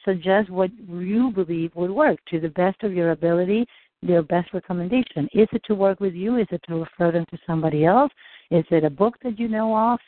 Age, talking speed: 60-79, 220 wpm